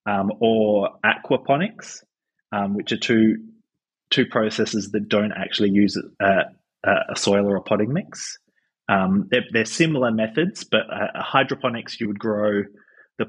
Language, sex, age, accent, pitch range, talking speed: English, male, 30-49, Australian, 105-125 Hz, 145 wpm